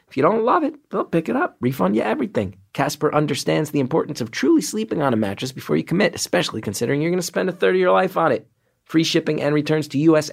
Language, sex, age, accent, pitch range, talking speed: English, male, 30-49, American, 115-155 Hz, 255 wpm